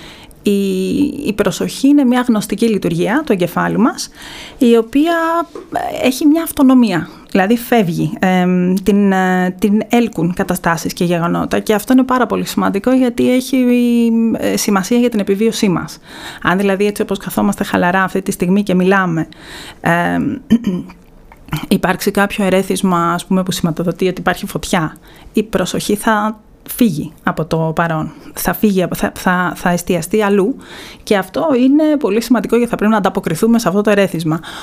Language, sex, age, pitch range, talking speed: Greek, female, 30-49, 185-230 Hz, 155 wpm